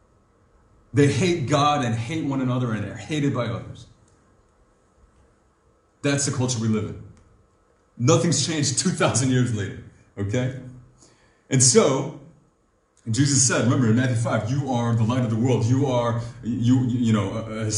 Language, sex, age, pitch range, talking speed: English, male, 30-49, 115-140 Hz, 150 wpm